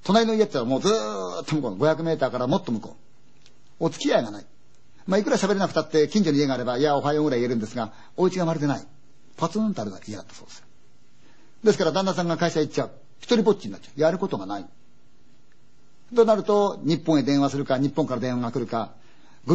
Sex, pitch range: male, 125-180 Hz